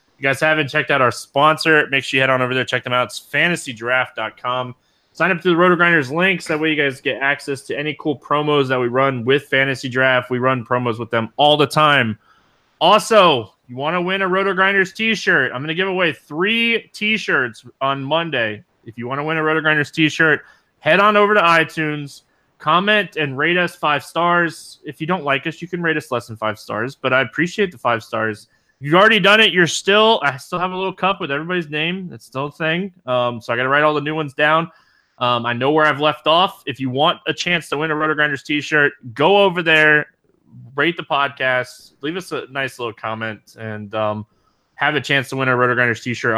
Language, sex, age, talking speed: English, male, 20-39, 235 wpm